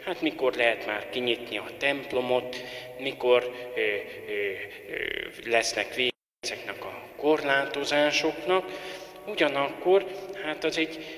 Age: 30-49